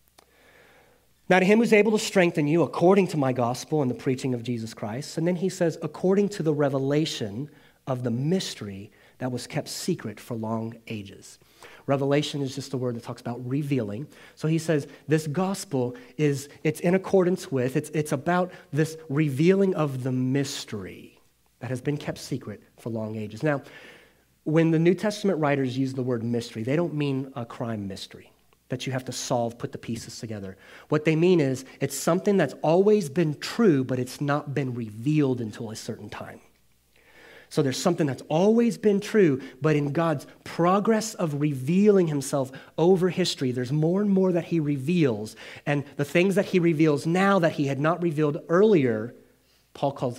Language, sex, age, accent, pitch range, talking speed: English, male, 30-49, American, 125-170 Hz, 185 wpm